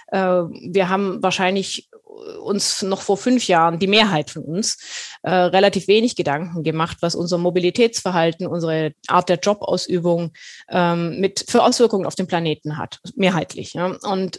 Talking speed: 135 wpm